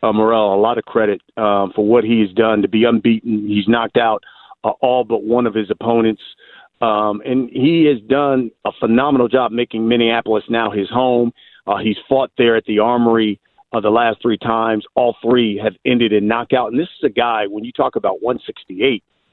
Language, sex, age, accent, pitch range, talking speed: English, male, 50-69, American, 110-125 Hz, 205 wpm